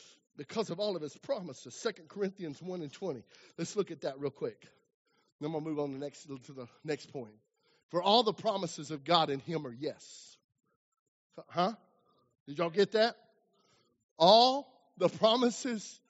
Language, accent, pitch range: English, American, 150-225 Hz